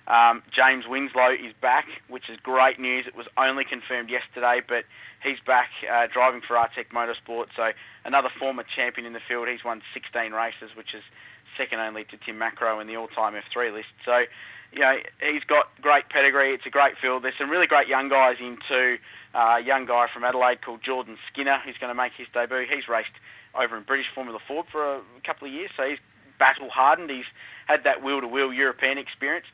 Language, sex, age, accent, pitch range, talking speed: English, male, 30-49, Australian, 120-135 Hz, 205 wpm